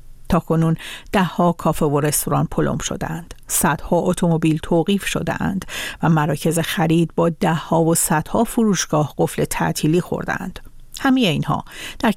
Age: 50-69